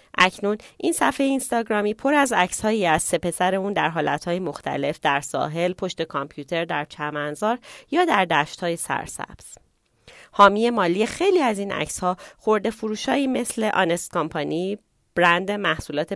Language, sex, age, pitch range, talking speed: Persian, female, 30-49, 155-205 Hz, 150 wpm